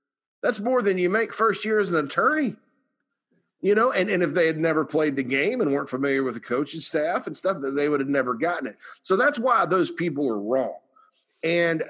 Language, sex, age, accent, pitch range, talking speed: English, male, 50-69, American, 130-195 Hz, 225 wpm